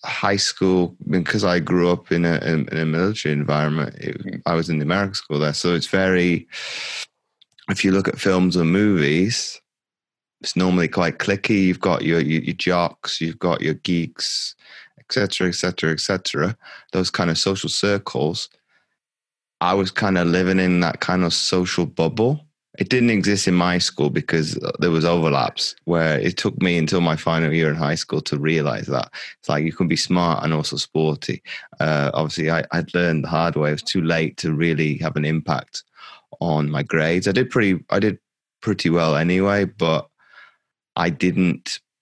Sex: male